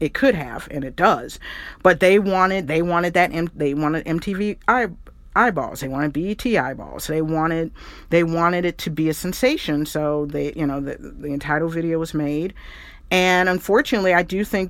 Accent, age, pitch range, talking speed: American, 50-69, 155-190 Hz, 185 wpm